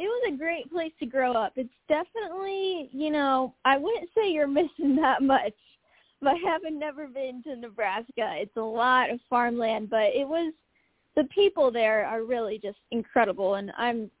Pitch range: 225-280 Hz